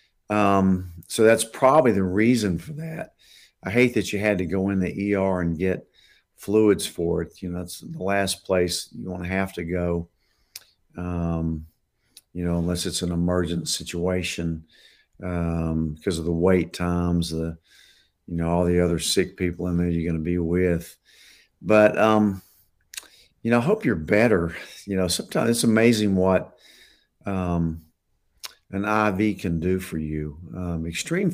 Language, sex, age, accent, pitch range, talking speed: English, male, 50-69, American, 85-100 Hz, 165 wpm